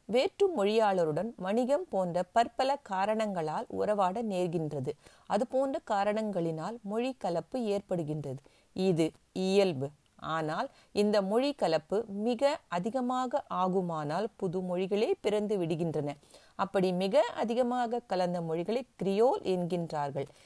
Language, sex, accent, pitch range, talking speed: Tamil, female, native, 170-230 Hz, 100 wpm